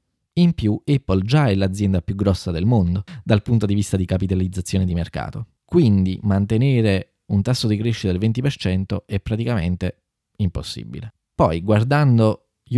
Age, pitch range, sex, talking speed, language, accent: 20-39, 95-120 Hz, male, 150 wpm, Italian, native